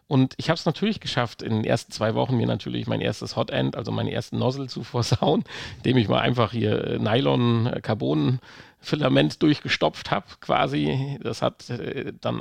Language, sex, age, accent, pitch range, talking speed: German, male, 40-59, German, 110-135 Hz, 165 wpm